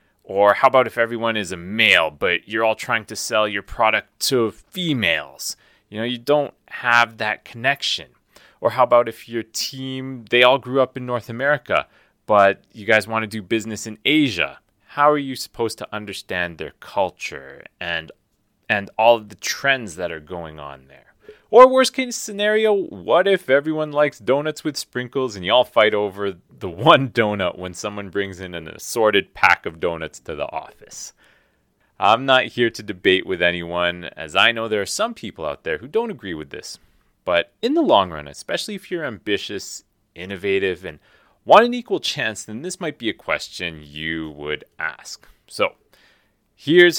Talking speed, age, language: 185 wpm, 30-49, English